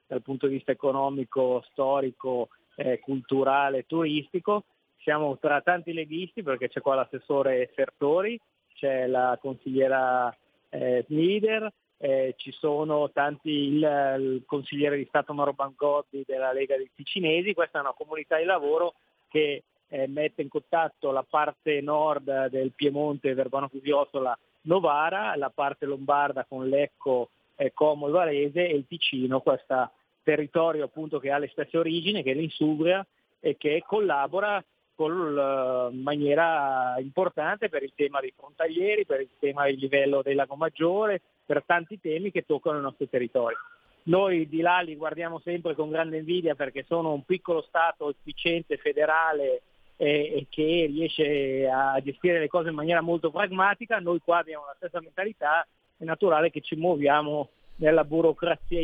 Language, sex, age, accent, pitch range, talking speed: Italian, male, 30-49, native, 140-170 Hz, 150 wpm